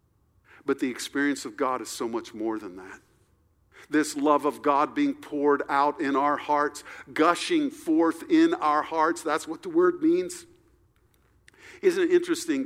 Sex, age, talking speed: male, 50-69, 160 wpm